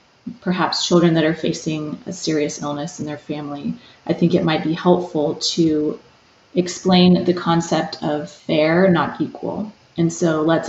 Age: 20-39